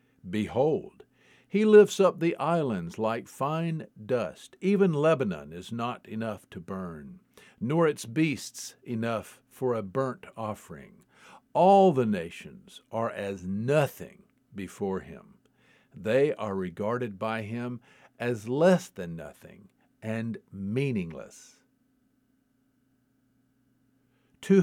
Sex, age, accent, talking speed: male, 50-69, American, 105 wpm